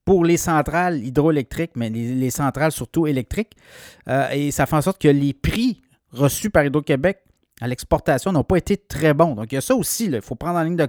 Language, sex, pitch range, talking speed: French, male, 140-175 Hz, 220 wpm